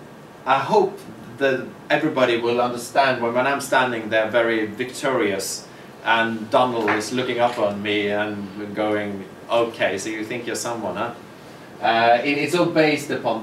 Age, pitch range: 30-49, 105-130 Hz